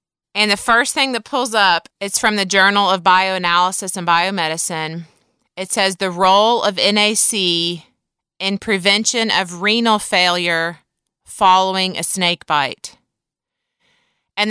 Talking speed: 130 wpm